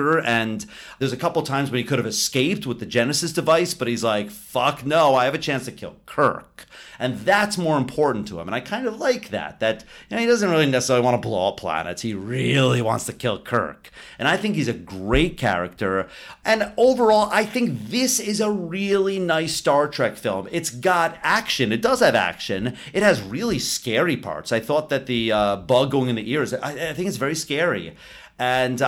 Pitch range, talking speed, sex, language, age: 120-170 Hz, 220 wpm, male, English, 40-59